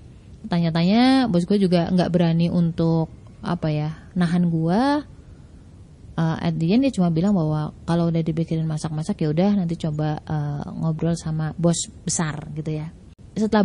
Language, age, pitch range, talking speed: Indonesian, 20-39, 165-200 Hz, 145 wpm